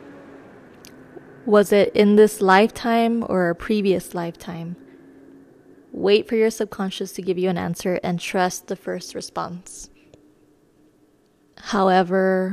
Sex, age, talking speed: female, 20-39, 115 wpm